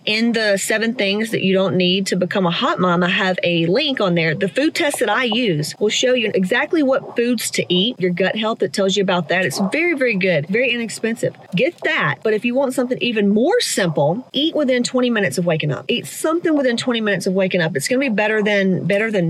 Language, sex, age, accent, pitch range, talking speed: English, female, 30-49, American, 185-235 Hz, 245 wpm